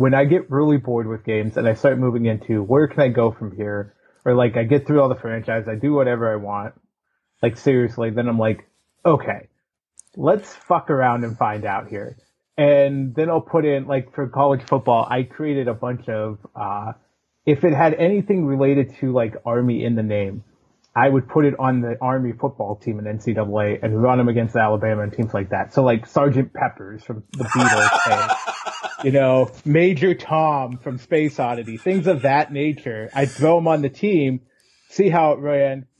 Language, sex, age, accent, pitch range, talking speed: English, male, 30-49, American, 115-145 Hz, 200 wpm